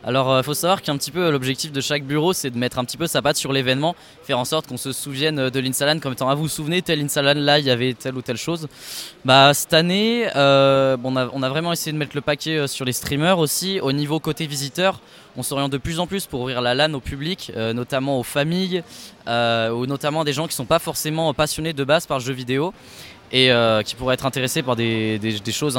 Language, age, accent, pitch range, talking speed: French, 20-39, French, 120-150 Hz, 265 wpm